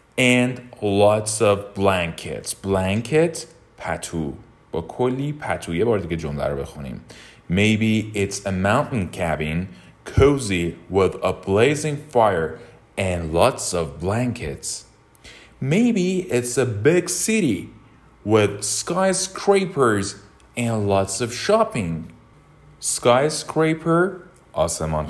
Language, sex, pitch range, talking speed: English, male, 100-150 Hz, 80 wpm